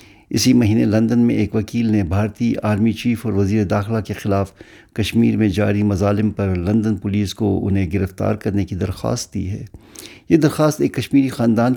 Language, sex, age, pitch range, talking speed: Urdu, male, 60-79, 100-115 Hz, 180 wpm